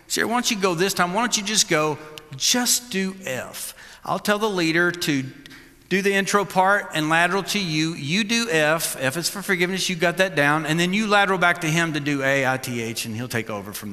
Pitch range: 150-210 Hz